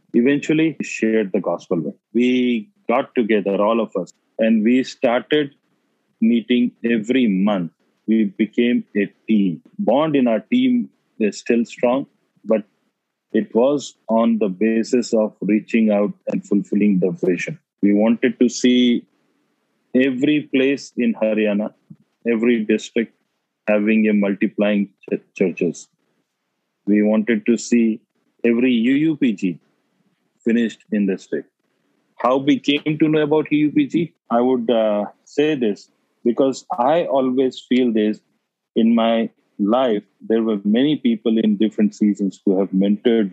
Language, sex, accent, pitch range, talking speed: English, male, Indian, 105-130 Hz, 135 wpm